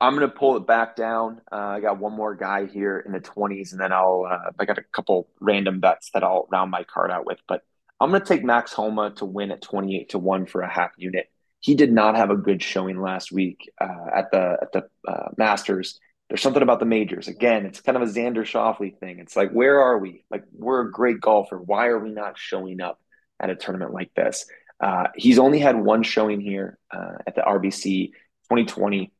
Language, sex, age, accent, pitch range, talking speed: English, male, 20-39, American, 95-115 Hz, 230 wpm